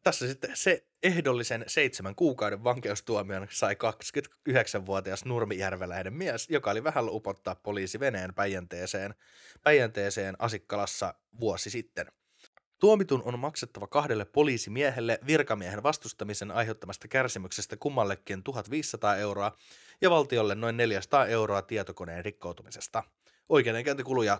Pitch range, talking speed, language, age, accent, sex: 100-130 Hz, 100 wpm, Finnish, 20-39, native, male